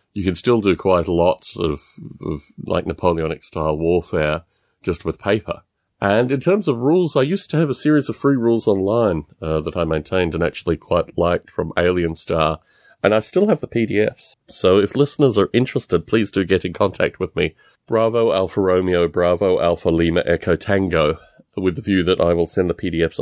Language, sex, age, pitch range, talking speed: English, male, 30-49, 85-110 Hz, 195 wpm